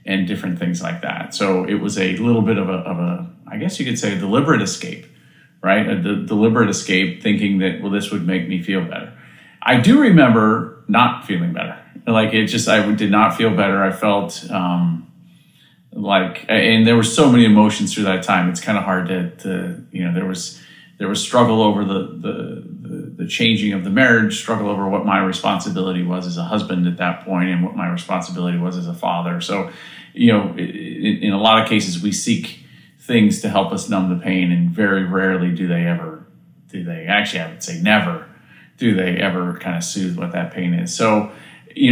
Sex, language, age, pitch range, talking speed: male, English, 40-59, 90-105 Hz, 210 wpm